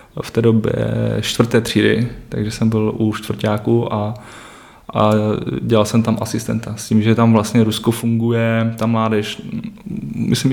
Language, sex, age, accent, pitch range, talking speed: Czech, male, 20-39, native, 110-120 Hz, 150 wpm